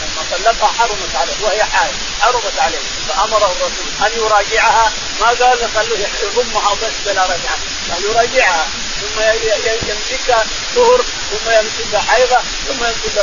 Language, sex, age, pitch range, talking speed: Arabic, male, 40-59, 205-245 Hz, 130 wpm